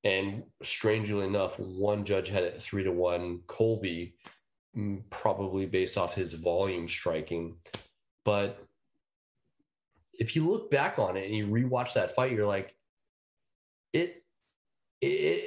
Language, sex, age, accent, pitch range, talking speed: English, male, 30-49, American, 95-125 Hz, 120 wpm